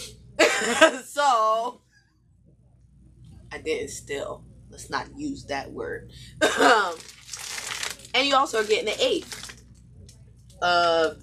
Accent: American